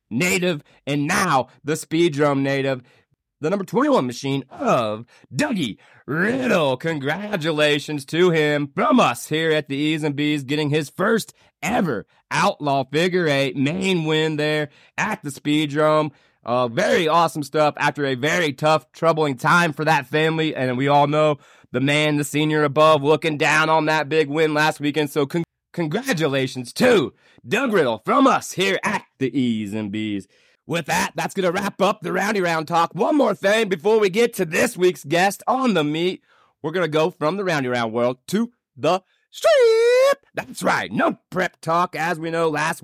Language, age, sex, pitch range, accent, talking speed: English, 30-49, male, 145-175 Hz, American, 175 wpm